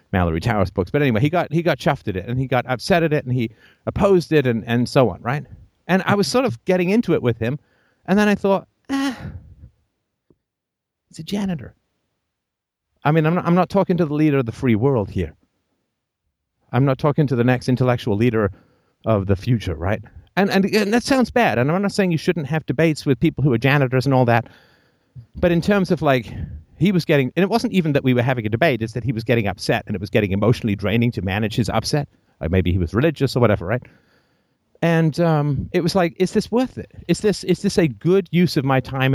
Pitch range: 115-175 Hz